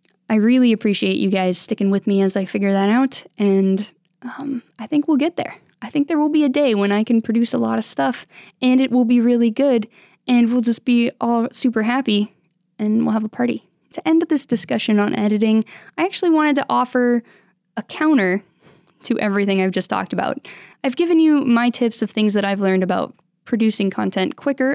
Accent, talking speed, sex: American, 210 wpm, female